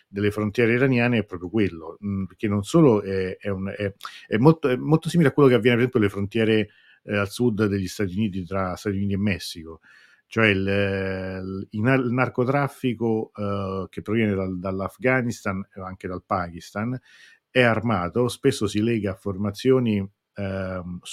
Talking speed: 170 wpm